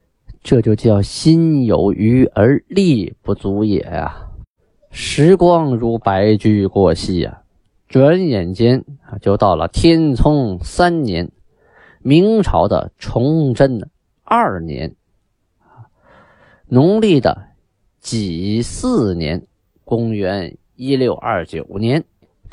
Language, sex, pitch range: Chinese, male, 95-130 Hz